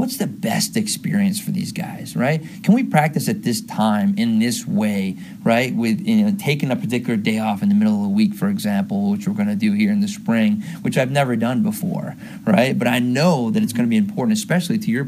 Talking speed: 235 wpm